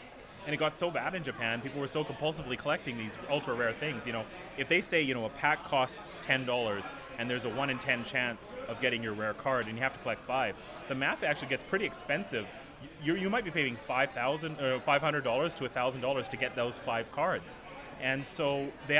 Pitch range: 120-145 Hz